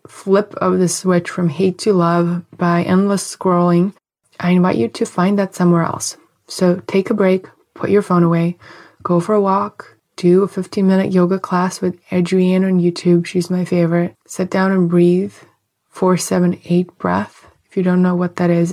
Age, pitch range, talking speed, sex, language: 20-39, 170-190 Hz, 190 wpm, female, English